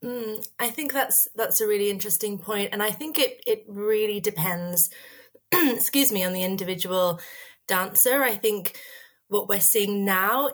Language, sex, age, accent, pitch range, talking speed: English, female, 20-39, British, 170-215 Hz, 160 wpm